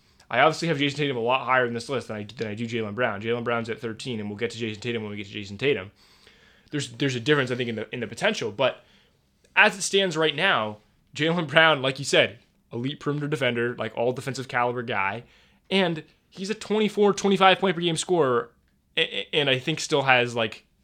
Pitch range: 110-145 Hz